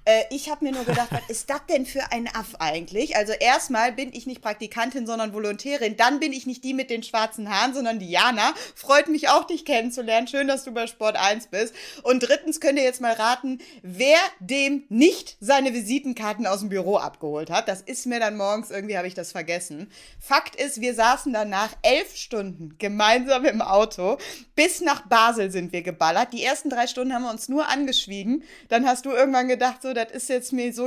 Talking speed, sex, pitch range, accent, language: 205 wpm, female, 215-275 Hz, German, German